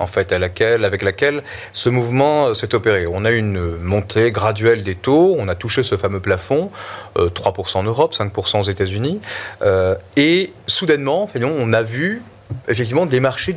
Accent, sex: French, male